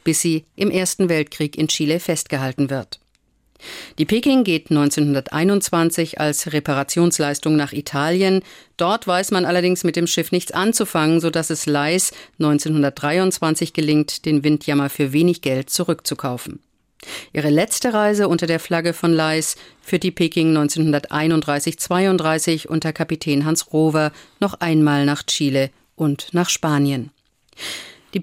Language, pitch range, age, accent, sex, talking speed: German, 150-180 Hz, 50-69, German, female, 130 wpm